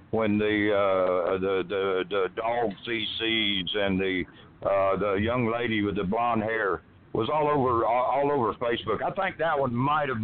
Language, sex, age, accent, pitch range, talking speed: English, male, 60-79, American, 100-130 Hz, 180 wpm